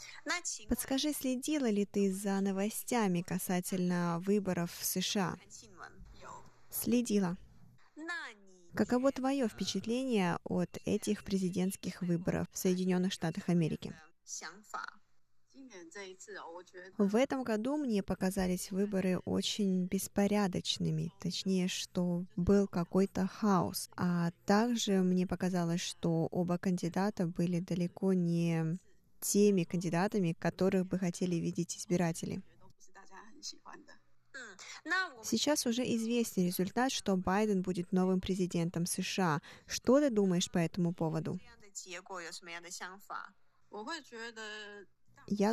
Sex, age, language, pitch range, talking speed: female, 20-39, Russian, 175-210 Hz, 90 wpm